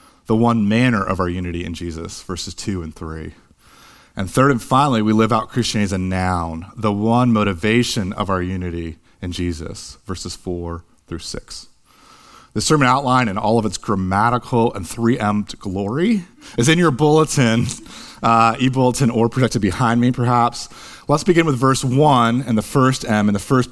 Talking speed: 175 wpm